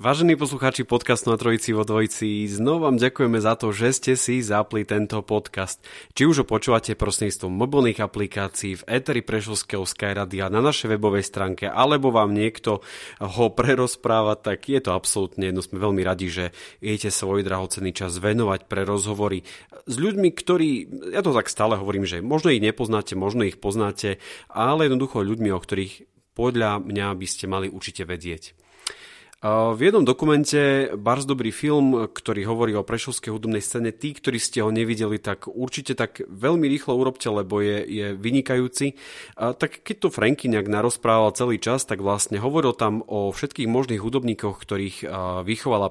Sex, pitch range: male, 100-125 Hz